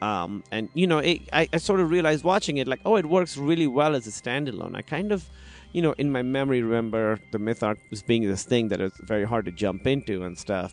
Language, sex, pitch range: English, male, 105-145 Hz